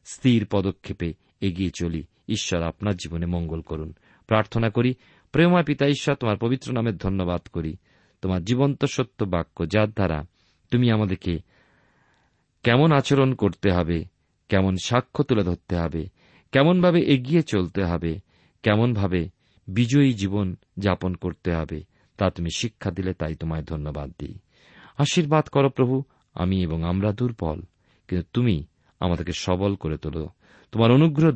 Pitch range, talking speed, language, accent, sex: 85-115 Hz, 90 wpm, Bengali, native, male